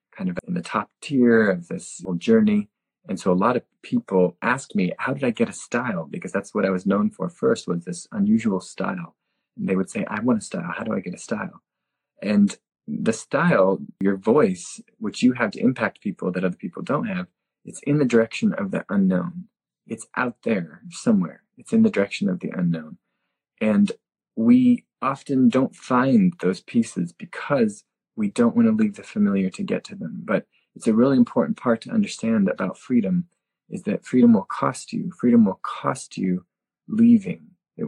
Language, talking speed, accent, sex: English, 200 wpm, American, male